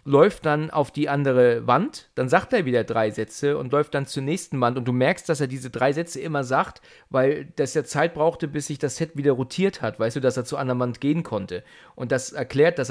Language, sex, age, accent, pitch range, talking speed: German, male, 40-59, German, 130-175 Hz, 245 wpm